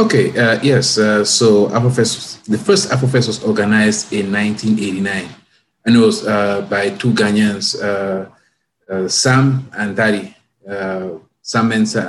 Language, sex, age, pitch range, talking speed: English, male, 30-49, 100-115 Hz, 140 wpm